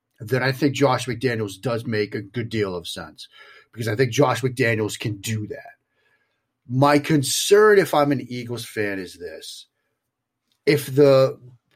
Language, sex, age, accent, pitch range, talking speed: English, male, 40-59, American, 110-145 Hz, 160 wpm